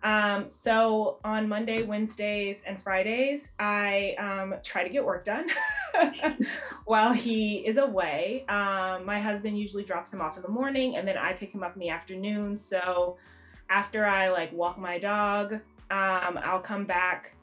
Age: 20-39